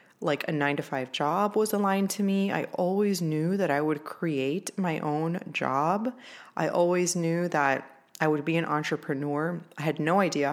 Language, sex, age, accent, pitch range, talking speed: English, female, 30-49, American, 150-185 Hz, 190 wpm